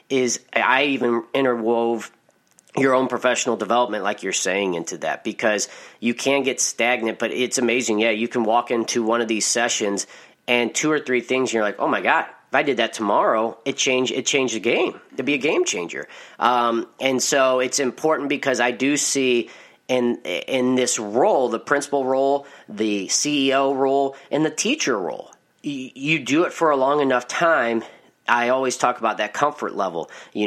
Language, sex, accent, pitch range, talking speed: English, male, American, 115-135 Hz, 190 wpm